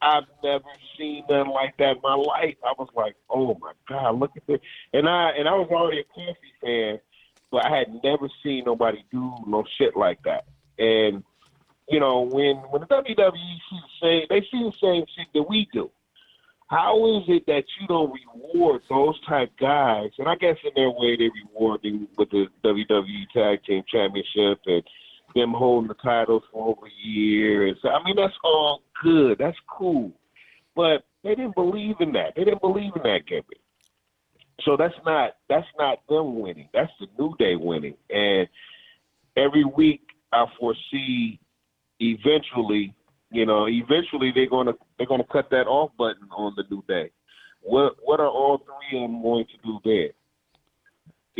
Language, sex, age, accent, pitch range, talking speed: English, male, 30-49, American, 115-175 Hz, 180 wpm